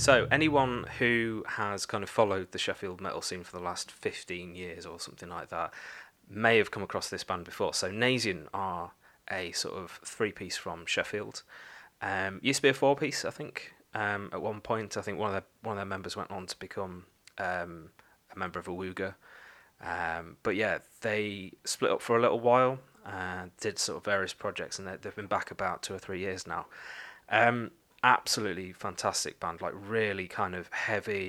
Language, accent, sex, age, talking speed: English, British, male, 20-39, 200 wpm